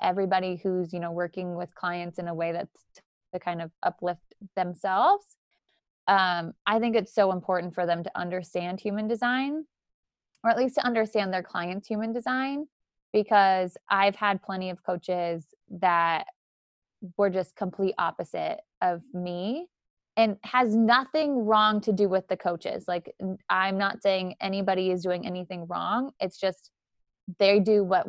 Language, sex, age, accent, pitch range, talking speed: English, female, 20-39, American, 185-230 Hz, 155 wpm